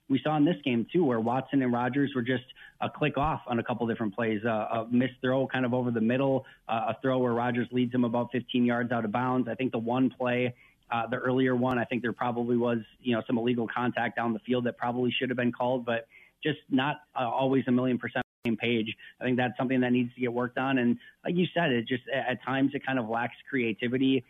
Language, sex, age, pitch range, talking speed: English, male, 30-49, 120-135 Hz, 260 wpm